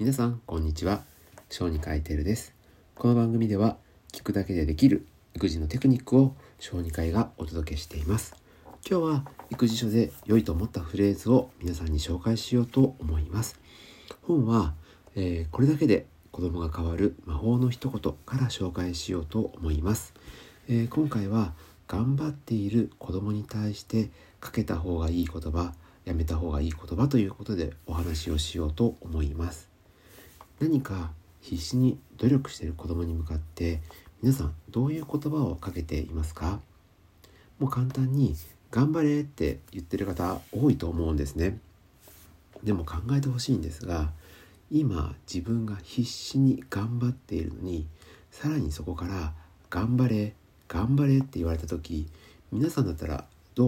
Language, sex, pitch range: Japanese, male, 80-115 Hz